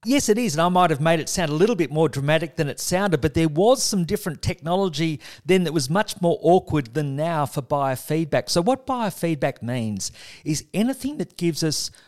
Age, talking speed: 50-69, 215 wpm